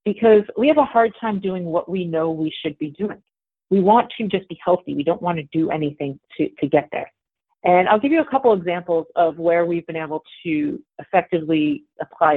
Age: 40-59